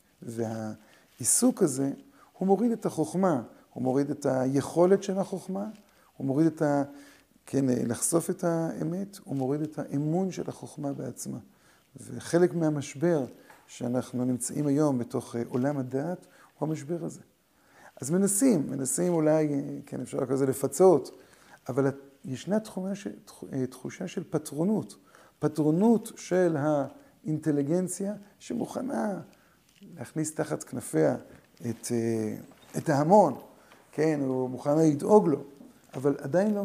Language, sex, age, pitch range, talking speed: Hebrew, male, 50-69, 135-175 Hz, 115 wpm